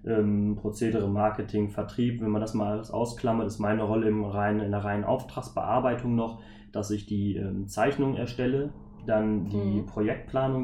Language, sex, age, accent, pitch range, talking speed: German, male, 20-39, German, 105-115 Hz, 160 wpm